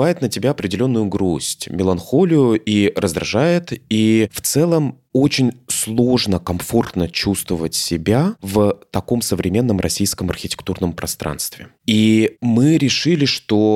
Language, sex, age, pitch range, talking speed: Russian, male, 20-39, 90-115 Hz, 110 wpm